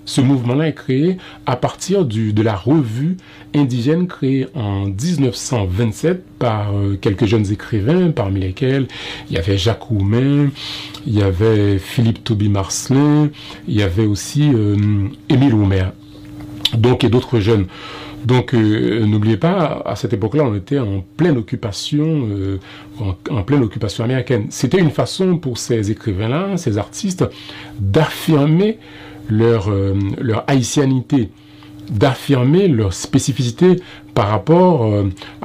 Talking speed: 135 wpm